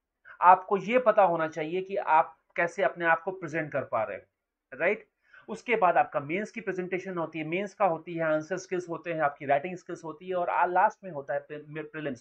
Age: 30-49